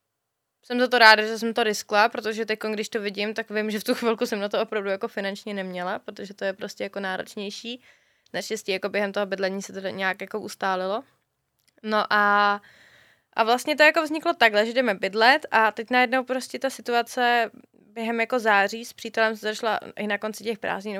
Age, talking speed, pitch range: 20-39, 205 wpm, 210-255 Hz